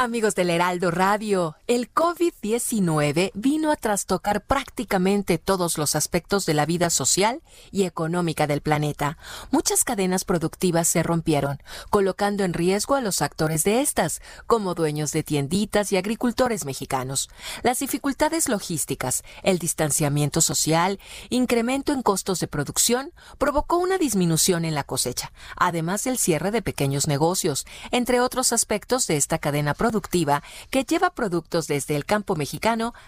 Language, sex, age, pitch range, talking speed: Spanish, female, 40-59, 155-230 Hz, 145 wpm